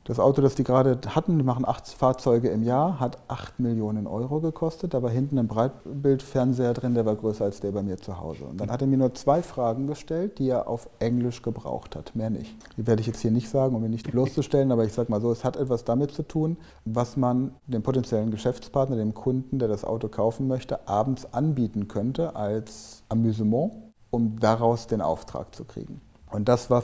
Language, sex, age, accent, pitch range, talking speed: German, male, 30-49, German, 110-135 Hz, 215 wpm